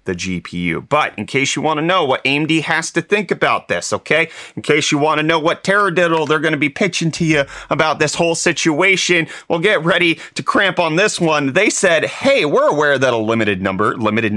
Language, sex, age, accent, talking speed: English, male, 30-49, American, 225 wpm